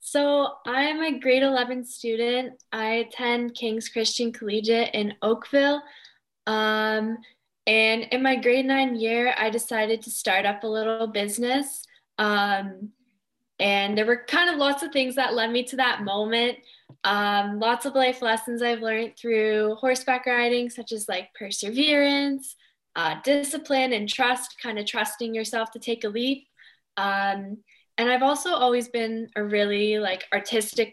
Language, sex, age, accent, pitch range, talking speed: English, female, 10-29, American, 210-250 Hz, 150 wpm